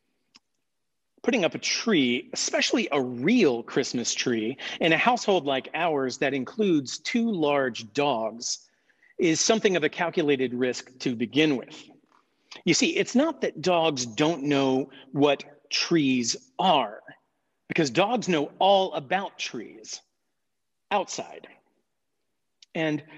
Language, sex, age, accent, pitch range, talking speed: English, male, 40-59, American, 135-190 Hz, 120 wpm